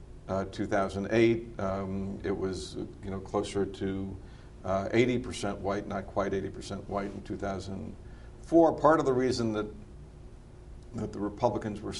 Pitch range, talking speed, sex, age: 100-110 Hz, 135 wpm, male, 60-79